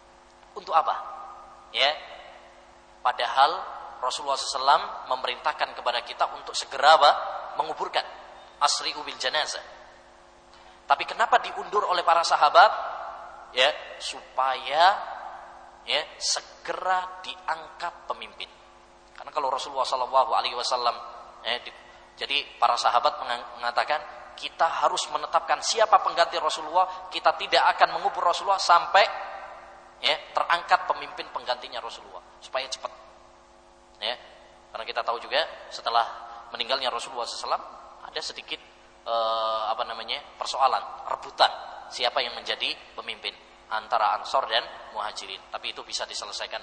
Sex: male